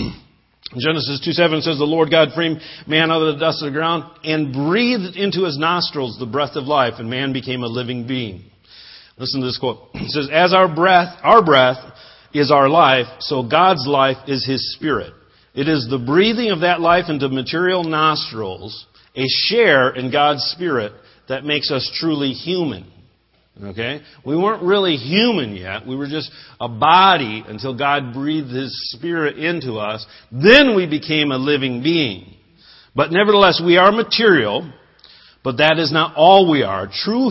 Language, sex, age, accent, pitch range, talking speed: English, male, 50-69, American, 130-170 Hz, 170 wpm